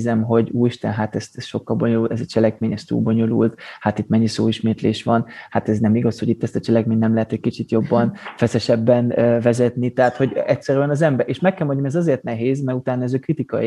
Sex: male